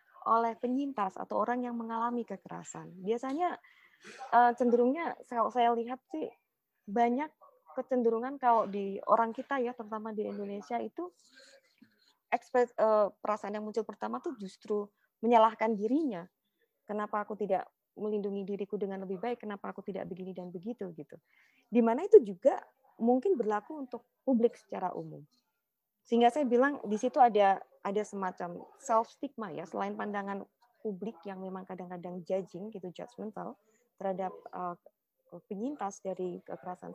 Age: 20-39